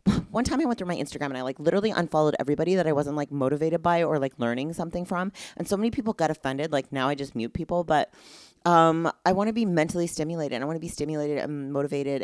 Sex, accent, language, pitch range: female, American, English, 130-165 Hz